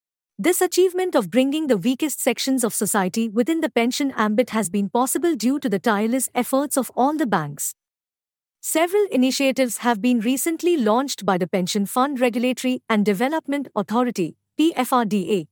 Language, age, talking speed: English, 50-69, 155 wpm